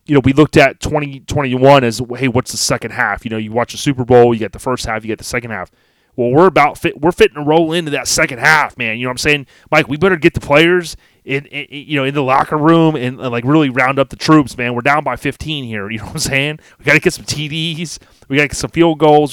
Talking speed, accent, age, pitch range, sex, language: 300 wpm, American, 30-49, 115-145 Hz, male, English